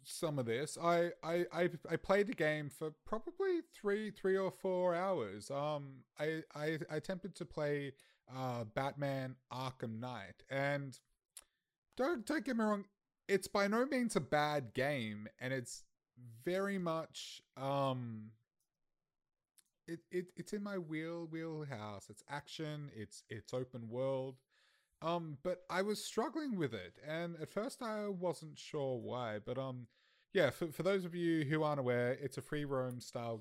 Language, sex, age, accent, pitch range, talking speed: English, male, 30-49, Australian, 115-165 Hz, 160 wpm